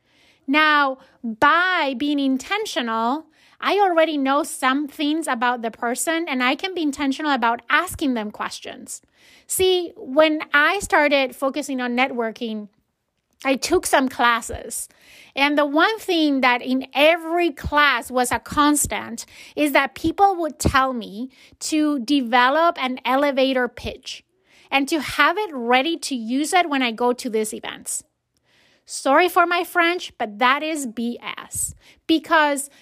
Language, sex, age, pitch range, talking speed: English, female, 30-49, 255-325 Hz, 140 wpm